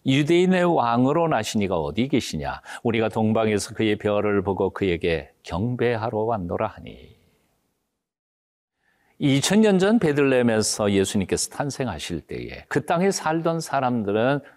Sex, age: male, 50-69